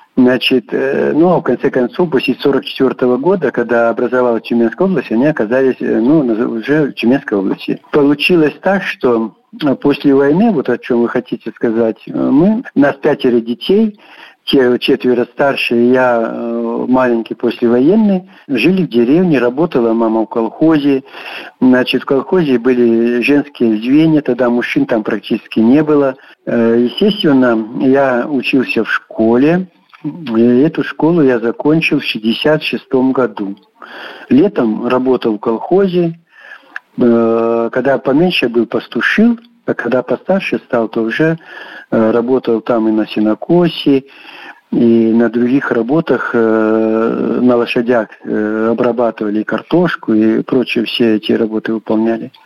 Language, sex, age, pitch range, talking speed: Russian, male, 60-79, 115-145 Hz, 125 wpm